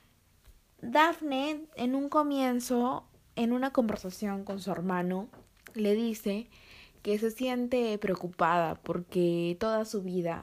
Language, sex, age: Spanish, female, 20-39